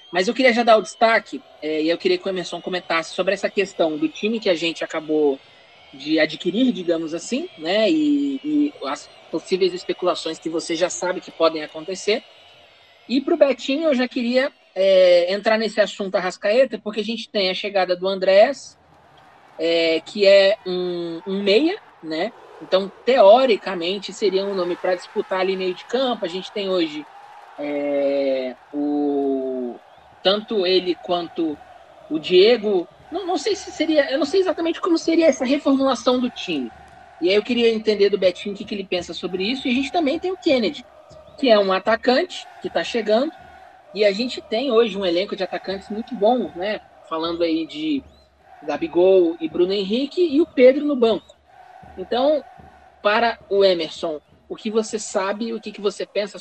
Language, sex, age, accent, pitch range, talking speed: Portuguese, male, 20-39, Brazilian, 180-285 Hz, 180 wpm